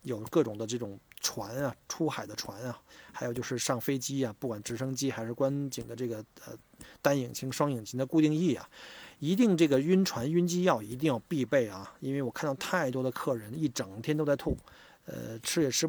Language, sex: Chinese, male